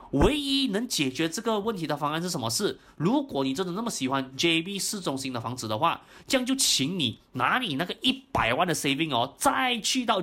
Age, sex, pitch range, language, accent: 20-39, male, 135-200 Hz, Chinese, native